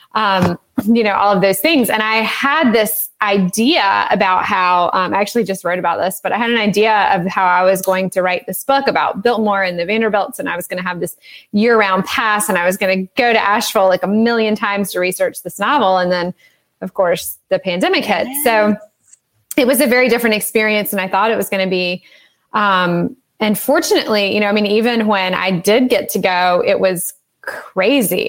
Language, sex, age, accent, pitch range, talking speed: English, female, 20-39, American, 185-230 Hz, 225 wpm